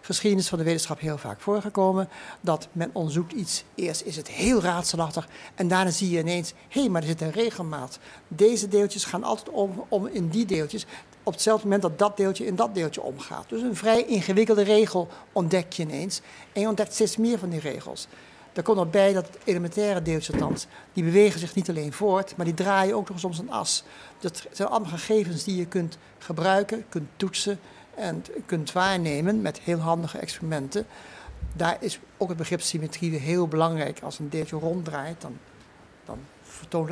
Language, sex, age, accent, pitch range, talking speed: Dutch, male, 60-79, Dutch, 160-200 Hz, 190 wpm